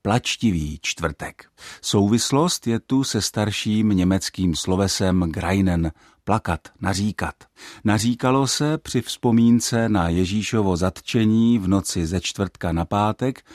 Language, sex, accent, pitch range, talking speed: Czech, male, native, 90-120 Hz, 110 wpm